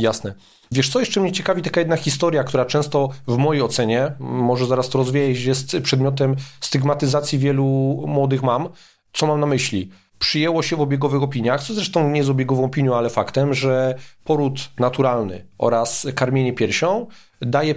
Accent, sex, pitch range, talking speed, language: native, male, 120-135 Hz, 160 wpm, Polish